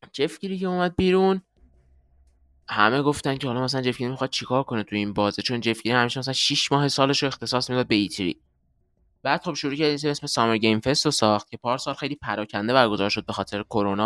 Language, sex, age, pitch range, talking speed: Persian, male, 20-39, 100-135 Hz, 210 wpm